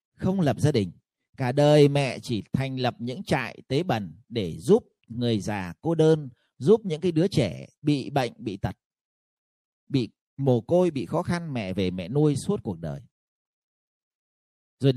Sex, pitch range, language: male, 120-170 Hz, Vietnamese